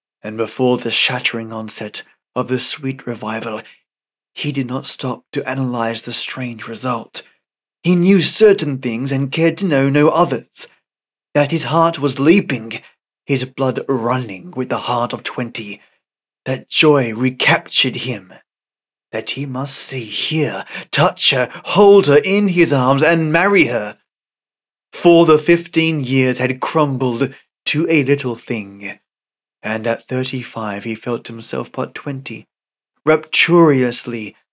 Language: English